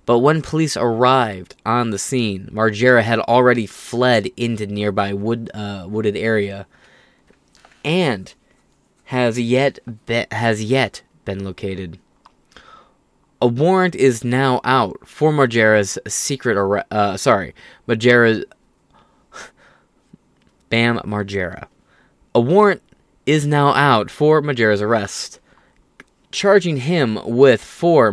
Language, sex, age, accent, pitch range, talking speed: English, male, 20-39, American, 105-135 Hz, 110 wpm